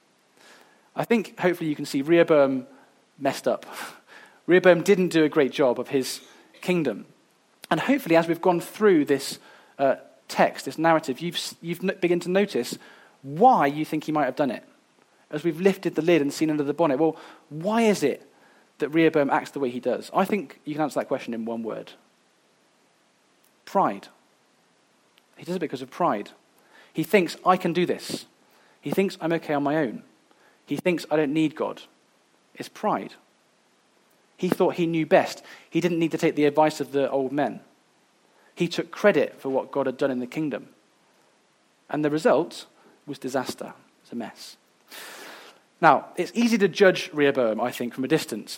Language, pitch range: English, 140-175 Hz